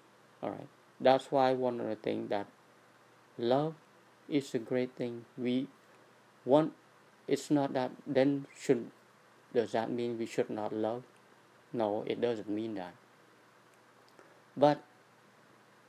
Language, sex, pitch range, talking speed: English, male, 105-130 Hz, 125 wpm